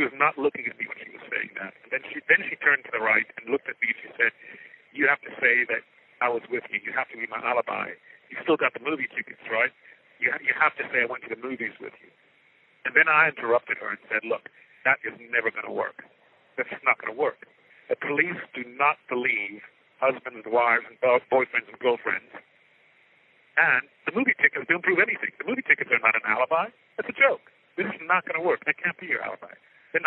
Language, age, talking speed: English, 60-79, 240 wpm